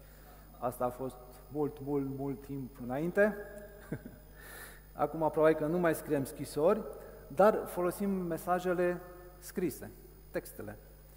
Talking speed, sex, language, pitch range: 105 wpm, male, Romanian, 135-180 Hz